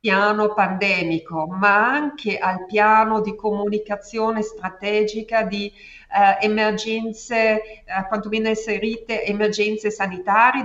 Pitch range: 195-225 Hz